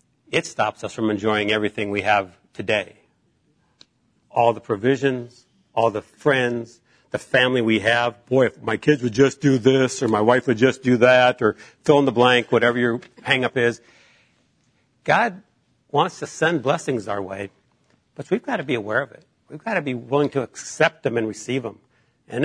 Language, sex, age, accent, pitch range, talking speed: English, male, 60-79, American, 115-140 Hz, 185 wpm